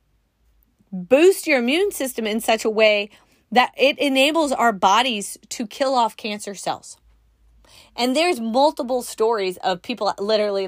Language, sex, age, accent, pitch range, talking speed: English, female, 30-49, American, 205-300 Hz, 140 wpm